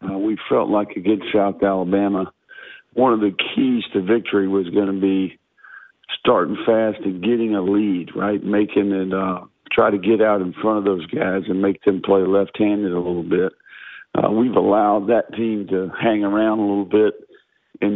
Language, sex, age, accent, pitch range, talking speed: English, male, 50-69, American, 95-110 Hz, 190 wpm